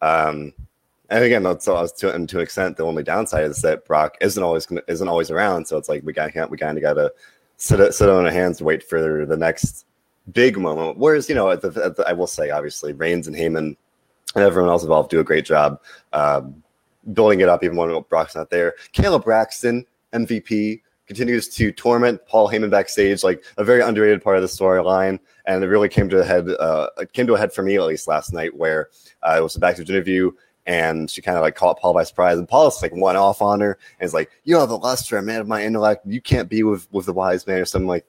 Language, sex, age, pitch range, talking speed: English, male, 20-39, 85-120 Hz, 245 wpm